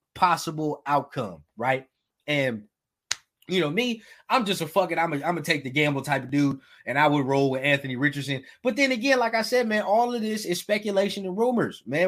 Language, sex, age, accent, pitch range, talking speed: English, male, 20-39, American, 140-205 Hz, 215 wpm